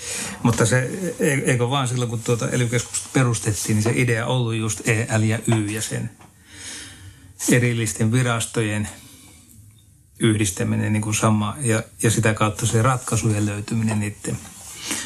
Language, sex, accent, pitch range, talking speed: Finnish, male, native, 105-120 Hz, 135 wpm